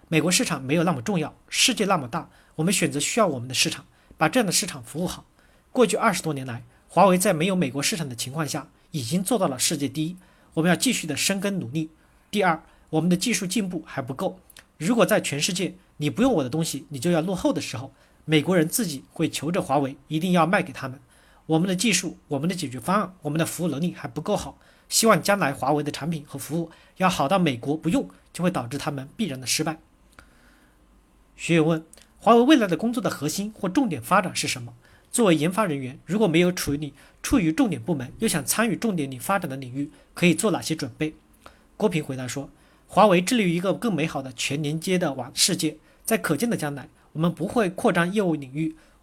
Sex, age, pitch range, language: male, 40-59, 145-195 Hz, Chinese